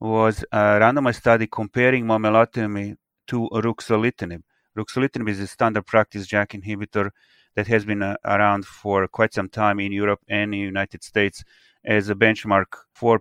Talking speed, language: 155 wpm, English